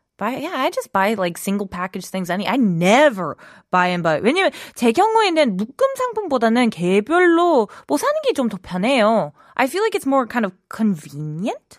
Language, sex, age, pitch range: Korean, female, 20-39, 185-285 Hz